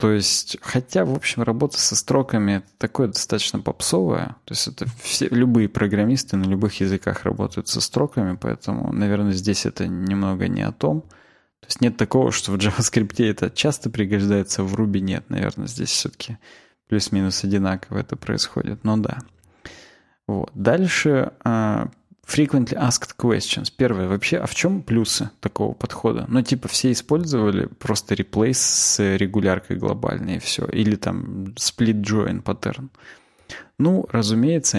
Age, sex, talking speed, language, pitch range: 20-39, male, 150 wpm, Russian, 95-125 Hz